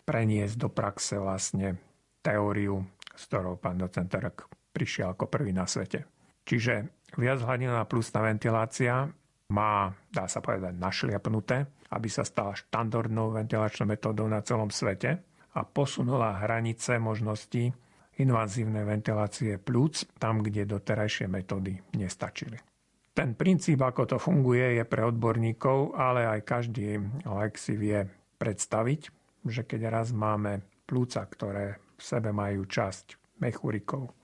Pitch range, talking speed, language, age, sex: 105-135 Hz, 125 wpm, Slovak, 50-69, male